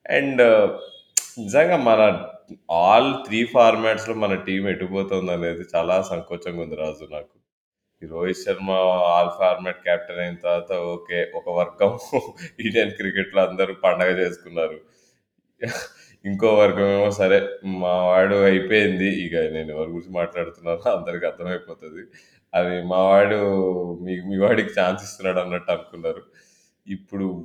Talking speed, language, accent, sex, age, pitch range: 120 wpm, Telugu, native, male, 20-39, 90-105 Hz